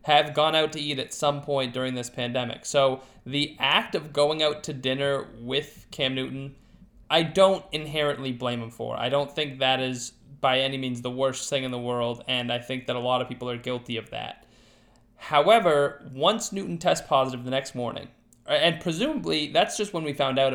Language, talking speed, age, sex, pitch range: English, 205 wpm, 20-39, male, 130-175 Hz